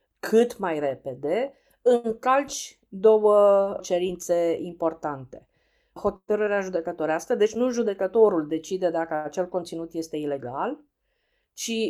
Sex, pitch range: female, 165-210 Hz